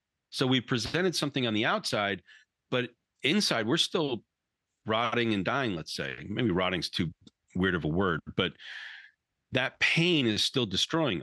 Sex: male